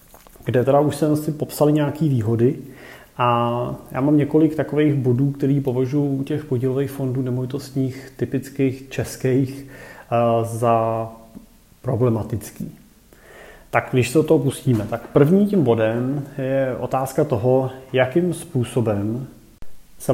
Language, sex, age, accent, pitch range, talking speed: Czech, male, 30-49, native, 120-140 Hz, 125 wpm